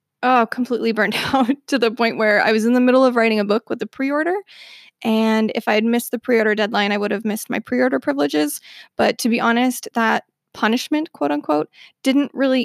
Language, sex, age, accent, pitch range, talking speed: English, female, 20-39, American, 220-260 Hz, 230 wpm